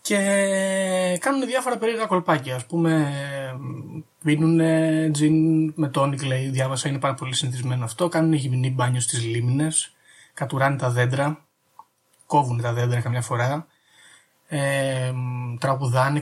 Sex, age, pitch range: male, 20-39, 130-170 Hz